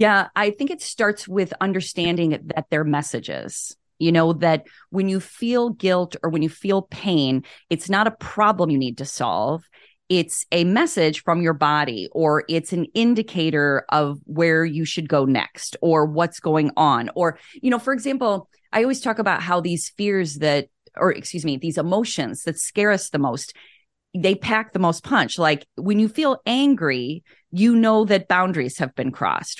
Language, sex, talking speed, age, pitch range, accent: English, female, 180 wpm, 30-49, 165-220 Hz, American